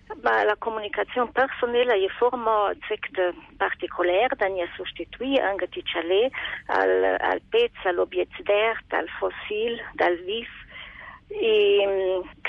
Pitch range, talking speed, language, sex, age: 185-290 Hz, 105 wpm, Italian, female, 40-59